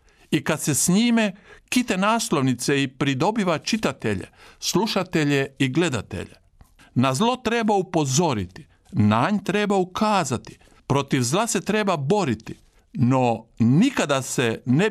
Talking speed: 120 wpm